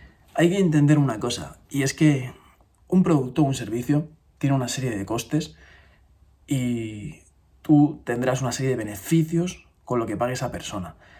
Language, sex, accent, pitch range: Spanish, male, Spanish, 115-150 Hz